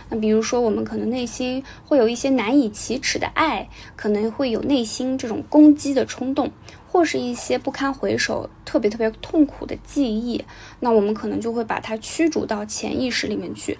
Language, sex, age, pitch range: Chinese, female, 10-29, 215-280 Hz